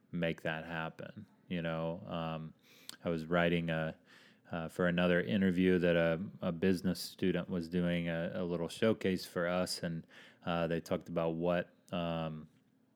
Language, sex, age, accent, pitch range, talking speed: English, male, 30-49, American, 80-90 Hz, 160 wpm